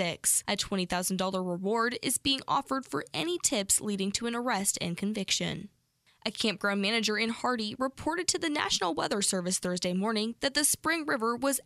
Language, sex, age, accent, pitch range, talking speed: English, female, 10-29, American, 190-260 Hz, 170 wpm